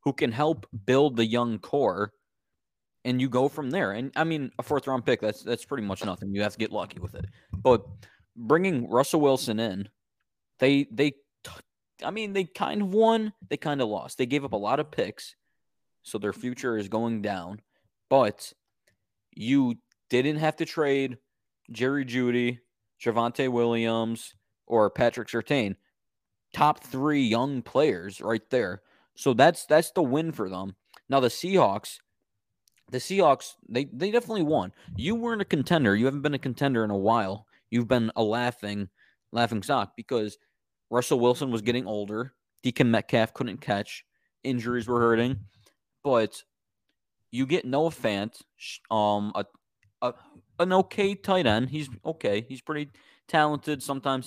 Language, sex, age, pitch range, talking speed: English, male, 20-39, 110-145 Hz, 160 wpm